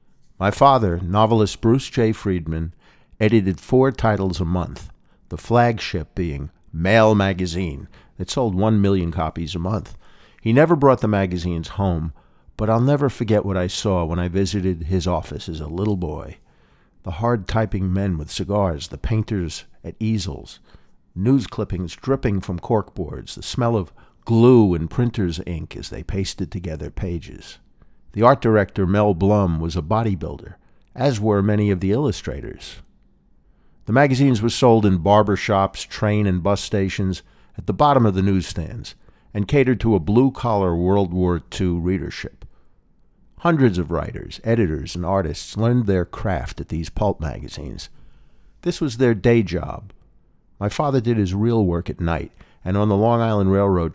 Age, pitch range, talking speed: 50-69, 90-110 Hz, 160 wpm